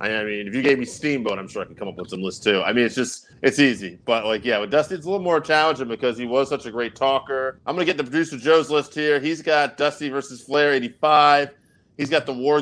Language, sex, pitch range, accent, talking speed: English, male, 115-145 Hz, American, 275 wpm